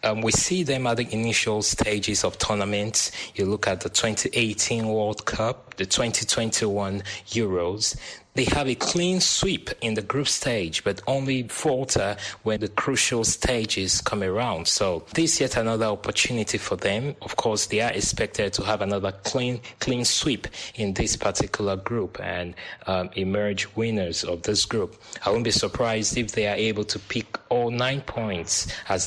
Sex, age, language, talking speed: male, 20-39, English, 170 wpm